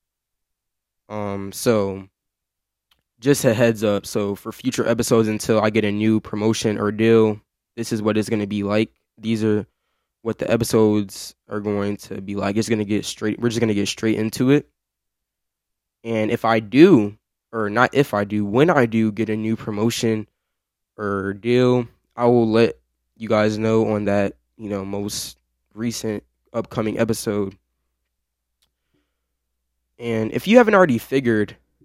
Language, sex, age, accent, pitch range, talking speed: English, male, 10-29, American, 95-115 Hz, 165 wpm